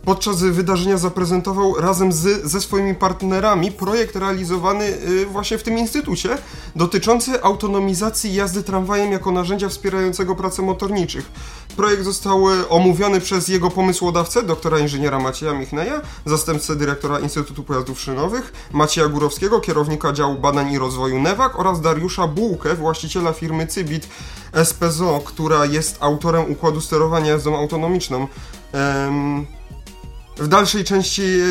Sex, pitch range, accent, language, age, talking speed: male, 150-190 Hz, native, Polish, 30-49, 120 wpm